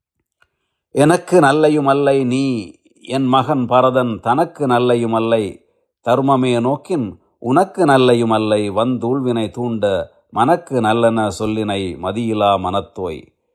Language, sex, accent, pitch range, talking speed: Tamil, male, native, 110-135 Hz, 95 wpm